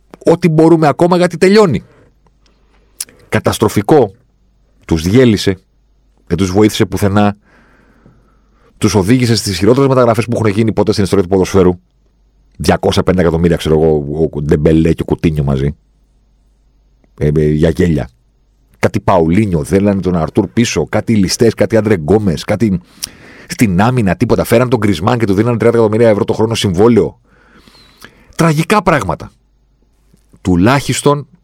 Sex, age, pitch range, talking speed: male, 40-59, 90-130 Hz, 130 wpm